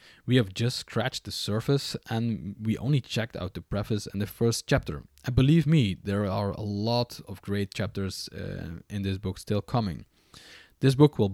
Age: 20-39